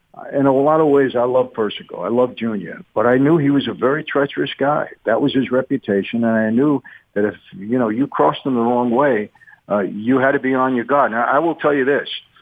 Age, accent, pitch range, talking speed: 50-69, American, 115-140 Hz, 245 wpm